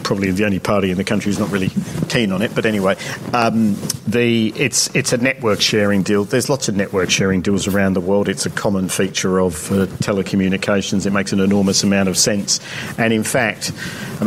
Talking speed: 210 wpm